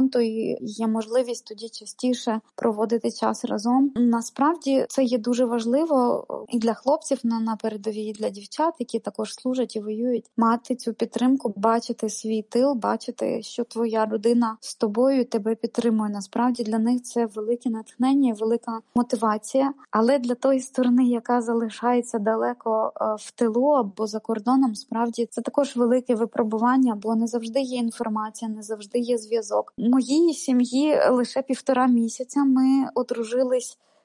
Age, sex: 20-39, female